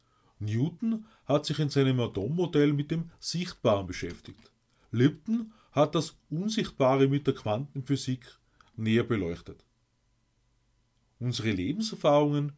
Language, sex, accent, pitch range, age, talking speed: German, male, Austrian, 115-150 Hz, 30-49, 100 wpm